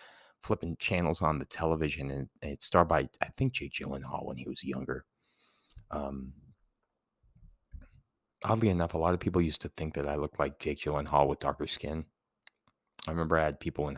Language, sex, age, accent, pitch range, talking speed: English, male, 30-49, American, 70-80 Hz, 180 wpm